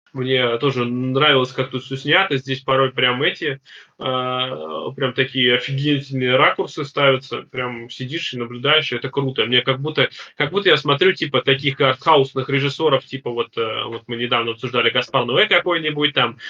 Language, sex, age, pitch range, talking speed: Russian, male, 20-39, 130-155 Hz, 165 wpm